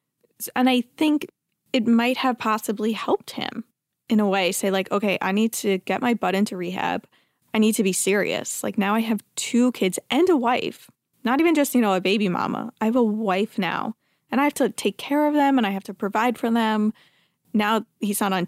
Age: 20-39